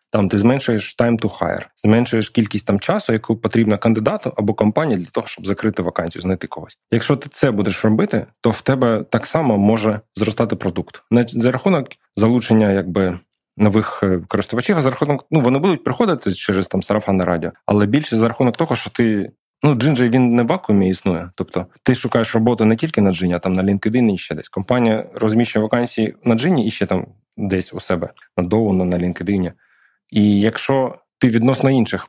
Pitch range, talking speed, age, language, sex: 100-115 Hz, 190 wpm, 20-39, Ukrainian, male